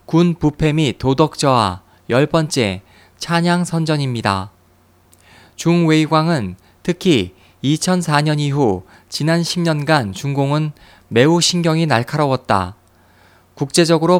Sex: male